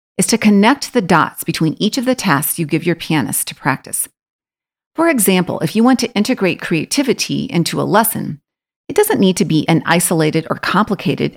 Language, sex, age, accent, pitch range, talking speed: English, female, 40-59, American, 160-215 Hz, 190 wpm